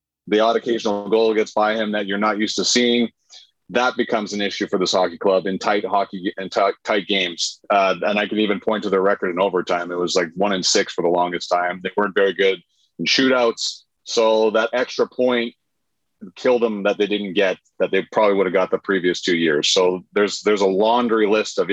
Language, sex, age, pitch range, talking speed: English, male, 30-49, 100-120 Hz, 225 wpm